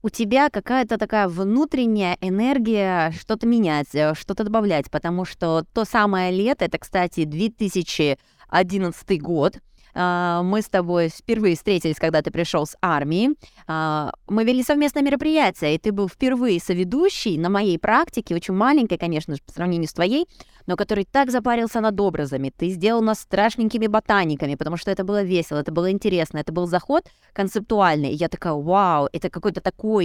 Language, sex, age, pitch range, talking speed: Russian, female, 20-39, 170-225 Hz, 160 wpm